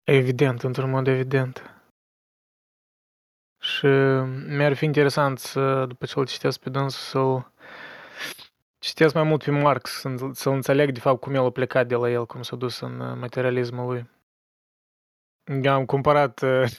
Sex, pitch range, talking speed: male, 125-145 Hz, 145 wpm